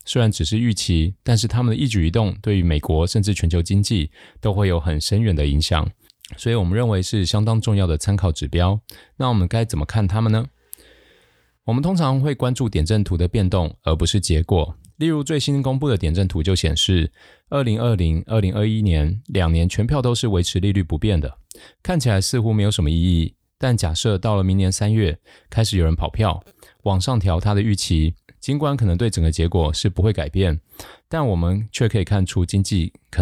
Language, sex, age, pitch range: Chinese, male, 20-39, 85-115 Hz